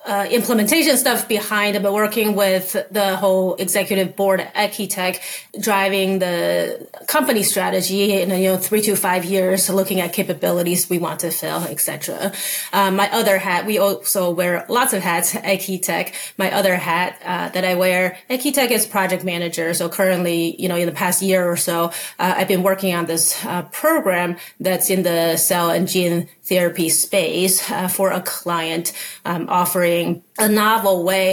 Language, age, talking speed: English, 30-49, 175 wpm